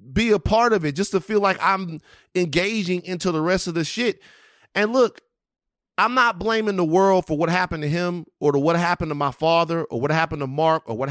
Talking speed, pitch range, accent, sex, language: 230 wpm, 155-200 Hz, American, male, English